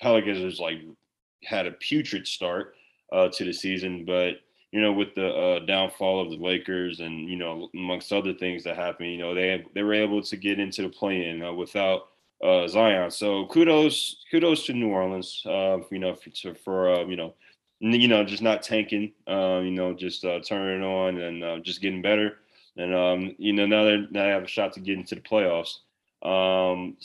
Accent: American